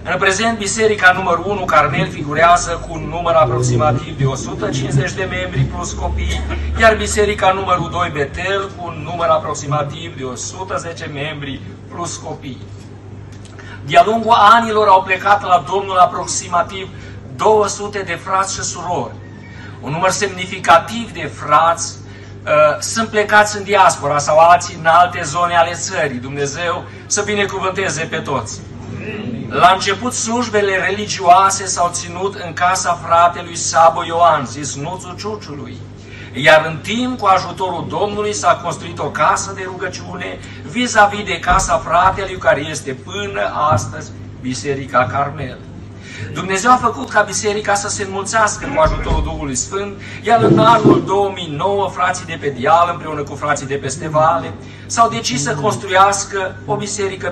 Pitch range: 125-190 Hz